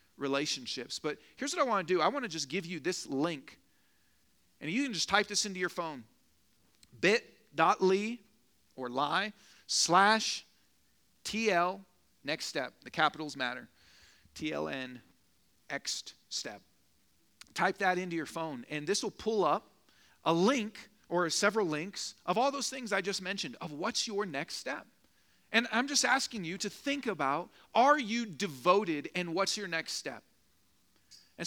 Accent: American